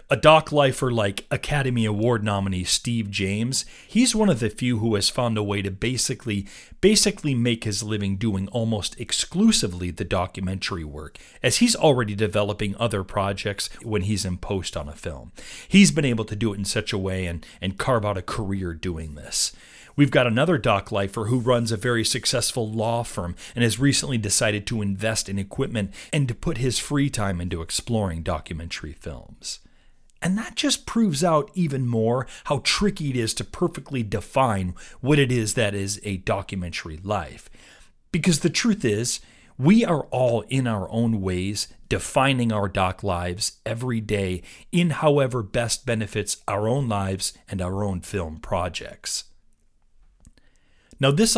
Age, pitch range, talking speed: 40-59, 95-130 Hz, 170 wpm